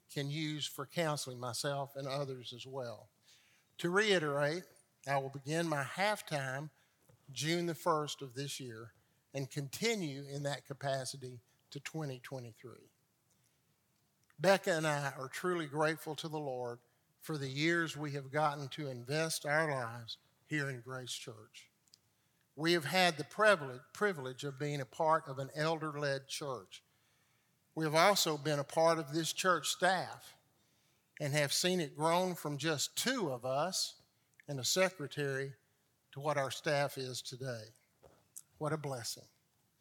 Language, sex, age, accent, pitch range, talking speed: English, male, 50-69, American, 135-165 Hz, 150 wpm